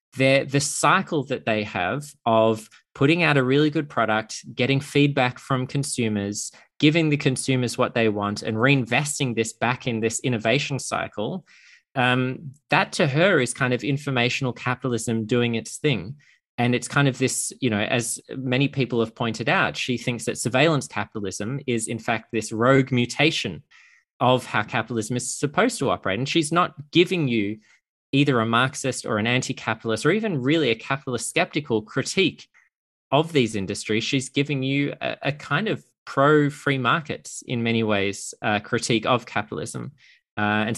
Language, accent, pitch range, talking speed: English, Australian, 115-140 Hz, 165 wpm